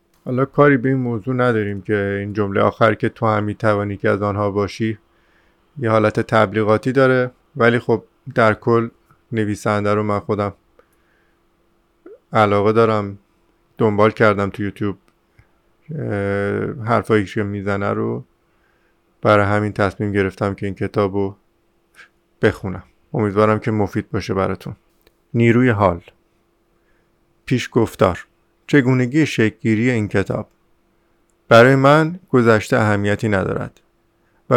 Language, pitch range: Persian, 100-120 Hz